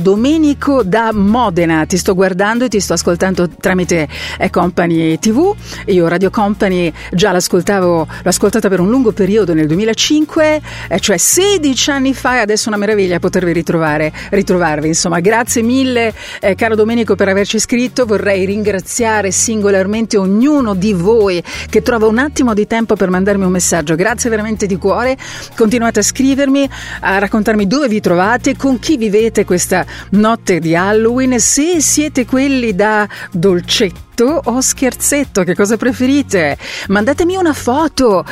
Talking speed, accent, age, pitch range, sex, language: 145 wpm, native, 50-69, 190-245 Hz, female, Italian